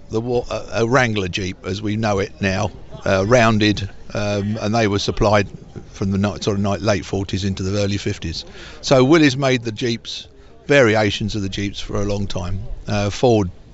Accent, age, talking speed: British, 50-69, 190 wpm